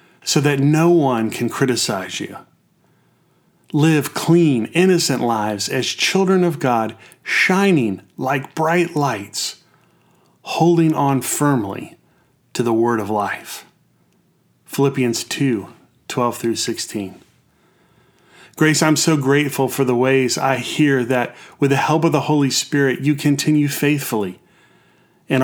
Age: 30-49